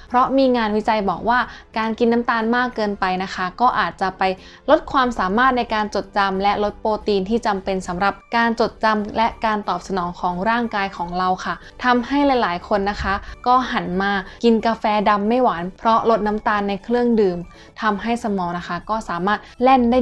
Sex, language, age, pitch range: female, Thai, 10-29, 195-230 Hz